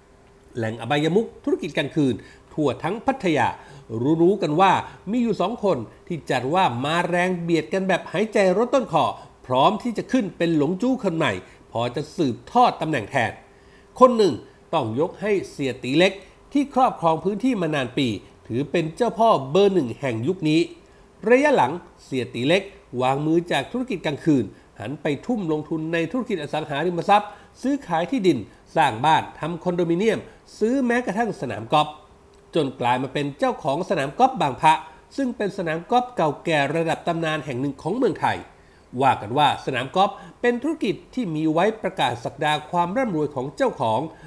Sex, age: male, 60-79